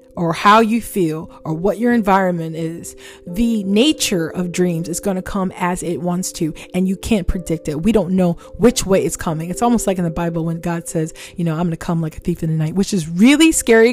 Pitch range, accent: 175-250 Hz, American